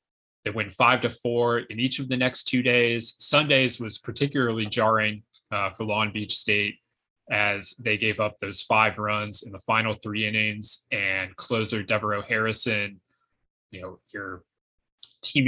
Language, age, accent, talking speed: English, 20-39, American, 160 wpm